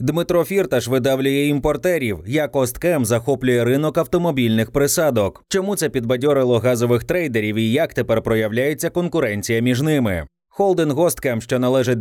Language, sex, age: Ukrainian, male, 20-39